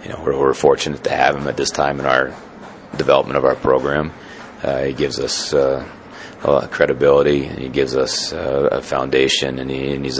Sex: male